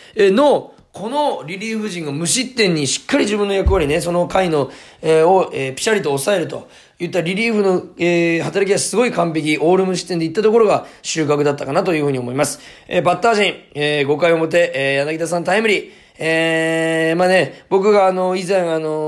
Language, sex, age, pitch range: Japanese, male, 20-39, 150-210 Hz